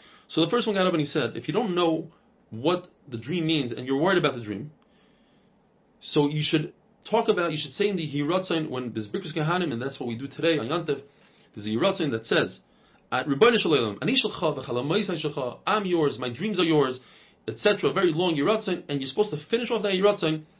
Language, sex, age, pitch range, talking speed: English, male, 30-49, 140-195 Hz, 200 wpm